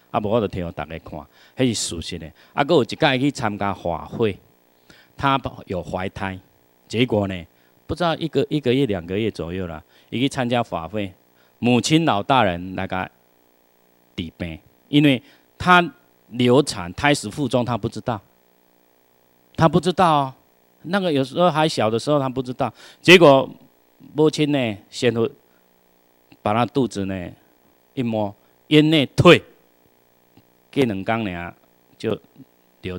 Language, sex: Chinese, male